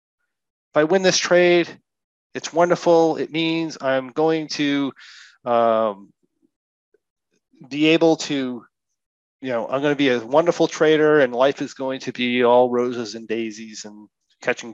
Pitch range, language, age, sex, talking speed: 120-160 Hz, English, 40-59, male, 150 wpm